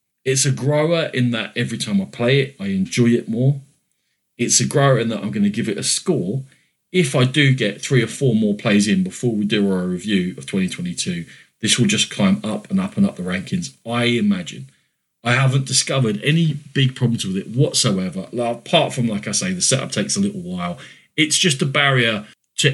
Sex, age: male, 40-59